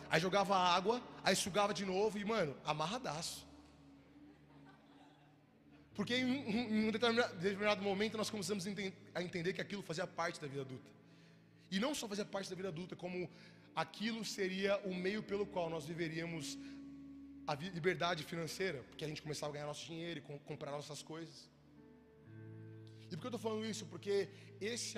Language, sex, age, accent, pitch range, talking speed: Portuguese, male, 20-39, Brazilian, 155-220 Hz, 160 wpm